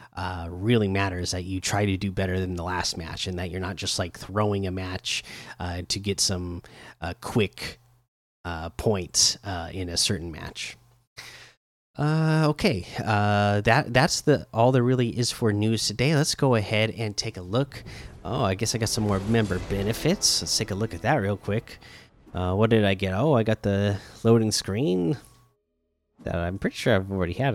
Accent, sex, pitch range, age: American, male, 95-125 Hz, 30-49